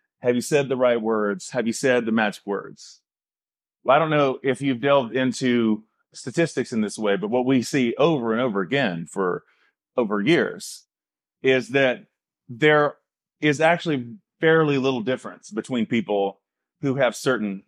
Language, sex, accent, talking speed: English, male, American, 165 wpm